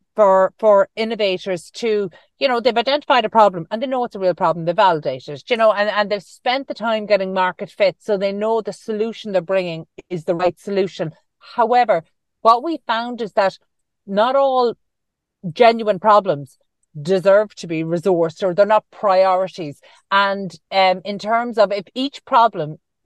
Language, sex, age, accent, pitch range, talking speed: English, female, 40-59, Irish, 180-220 Hz, 175 wpm